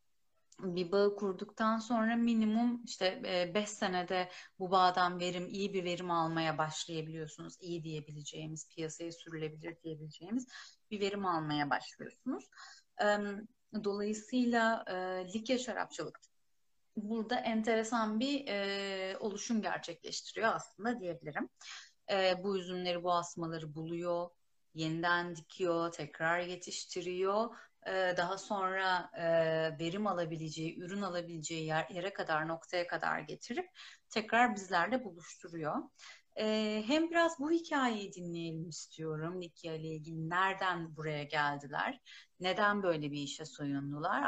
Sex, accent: female, native